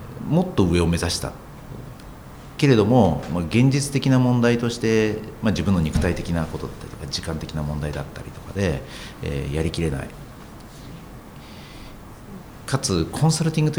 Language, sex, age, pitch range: Japanese, male, 50-69, 85-125 Hz